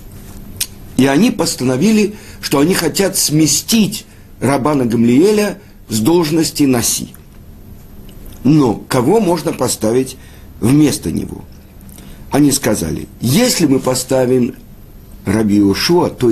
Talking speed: 90 wpm